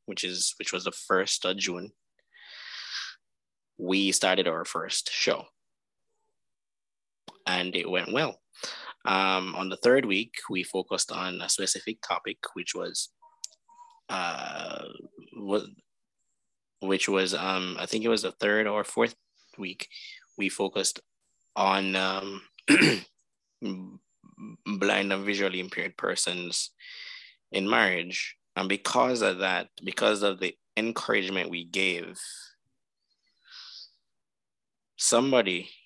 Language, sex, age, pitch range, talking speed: English, male, 20-39, 95-135 Hz, 110 wpm